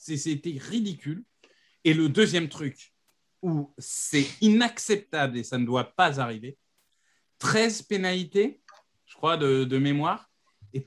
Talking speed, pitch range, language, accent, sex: 125 wpm, 135-220 Hz, French, French, male